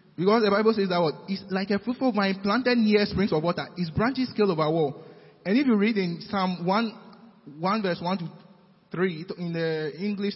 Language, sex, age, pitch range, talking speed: English, male, 20-39, 175-220 Hz, 210 wpm